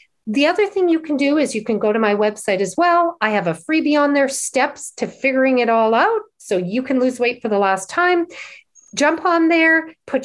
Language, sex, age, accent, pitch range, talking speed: English, female, 40-59, American, 215-310 Hz, 235 wpm